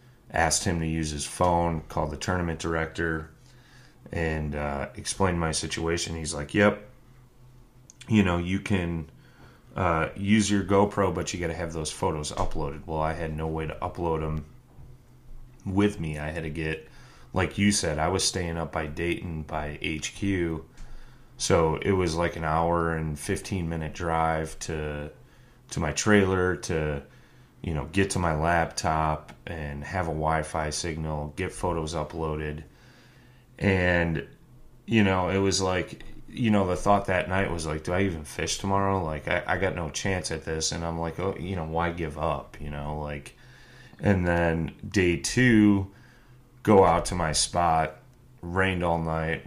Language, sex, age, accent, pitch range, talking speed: English, male, 30-49, American, 80-95 Hz, 170 wpm